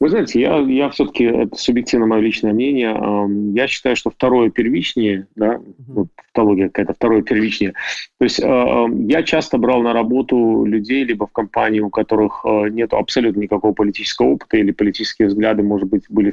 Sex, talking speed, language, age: male, 165 wpm, Russian, 30-49